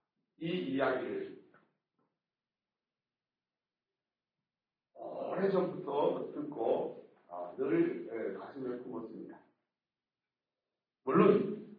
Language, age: Korean, 60-79